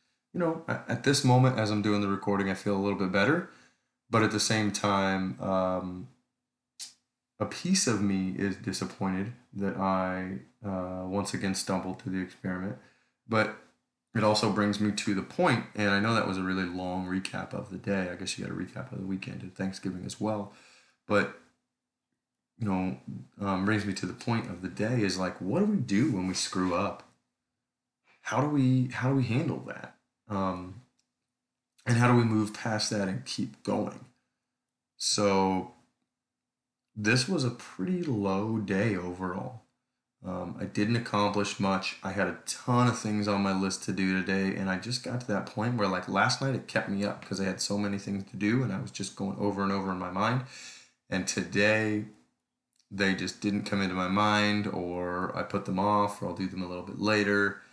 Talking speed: 200 wpm